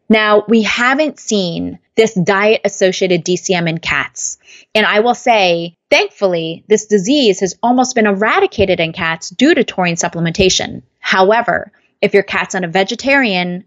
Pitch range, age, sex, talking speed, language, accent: 180-230 Hz, 20-39, female, 145 wpm, English, American